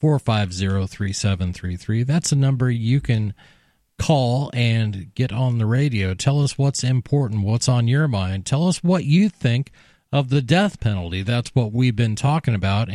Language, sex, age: English, male, 40-59